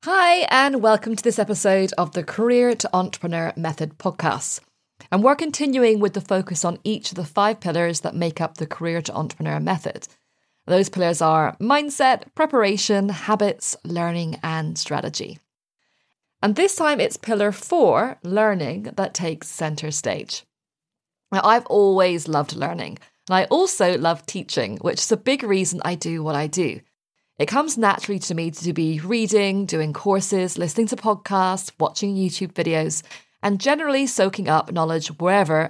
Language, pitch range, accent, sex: English, 160-220 Hz, British, female